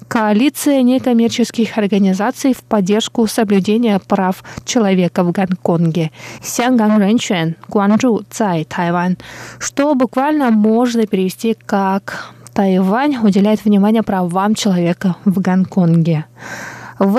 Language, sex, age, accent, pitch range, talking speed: Russian, female, 20-39, native, 195-245 Hz, 80 wpm